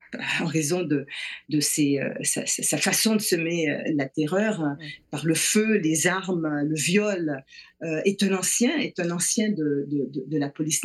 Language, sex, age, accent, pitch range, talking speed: French, female, 40-59, French, 160-210 Hz, 165 wpm